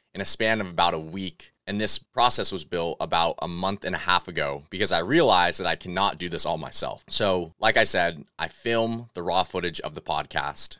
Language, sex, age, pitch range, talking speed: English, male, 20-39, 85-110 Hz, 230 wpm